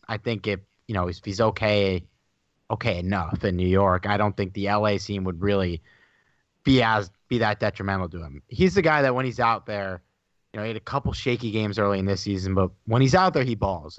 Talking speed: 235 wpm